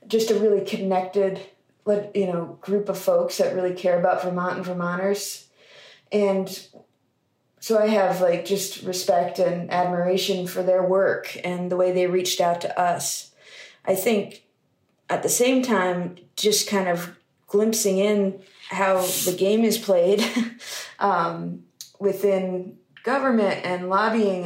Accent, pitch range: American, 180-205 Hz